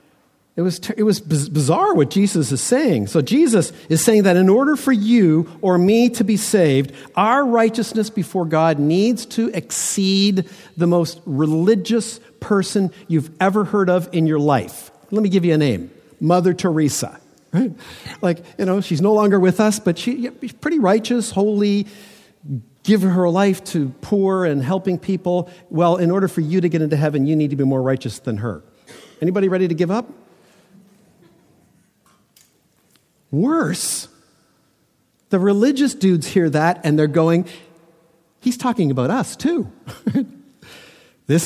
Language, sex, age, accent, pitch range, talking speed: English, male, 50-69, American, 150-200 Hz, 160 wpm